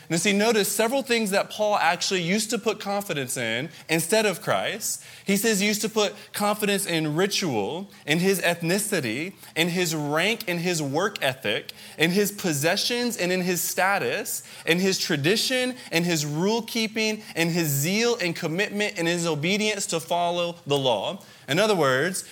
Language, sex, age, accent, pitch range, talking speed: English, male, 20-39, American, 160-205 Hz, 170 wpm